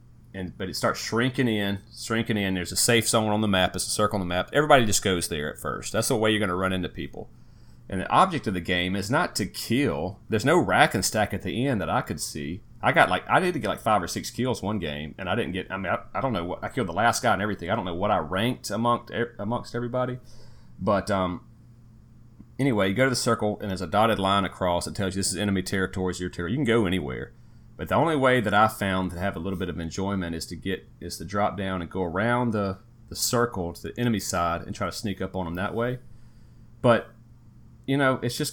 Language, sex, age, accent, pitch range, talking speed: English, male, 30-49, American, 95-120 Hz, 270 wpm